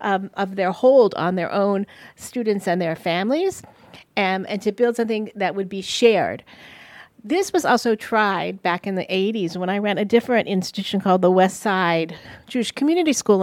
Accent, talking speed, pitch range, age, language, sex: American, 185 wpm, 185-230 Hz, 40-59, English, female